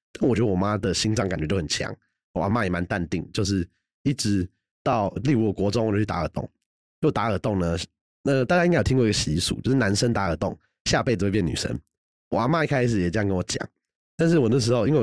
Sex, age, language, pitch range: male, 30-49, Chinese, 95-120 Hz